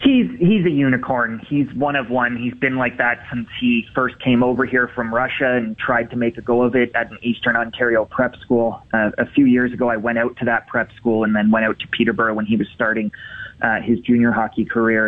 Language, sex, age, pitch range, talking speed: English, male, 30-49, 115-125 Hz, 245 wpm